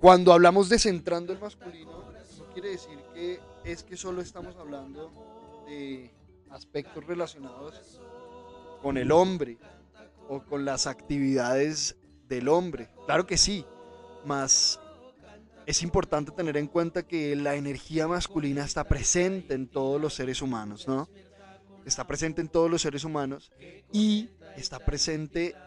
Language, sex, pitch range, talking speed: Spanish, male, 135-175 Hz, 135 wpm